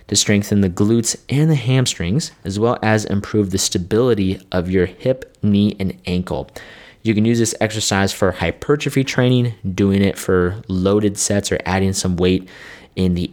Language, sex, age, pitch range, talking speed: English, male, 20-39, 95-105 Hz, 170 wpm